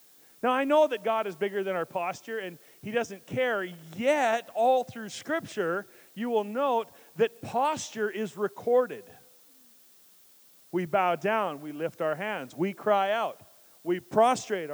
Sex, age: male, 40-59